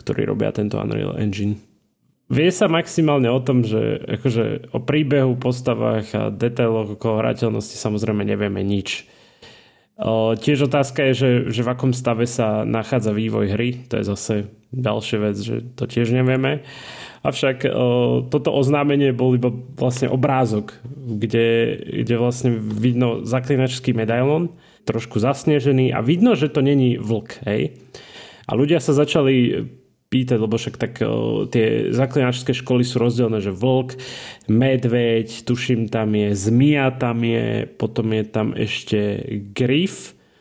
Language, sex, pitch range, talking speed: Slovak, male, 110-135 Hz, 140 wpm